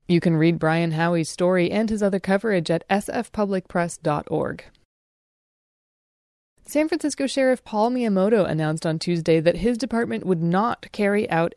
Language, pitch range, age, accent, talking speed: English, 165-210 Hz, 20-39, American, 140 wpm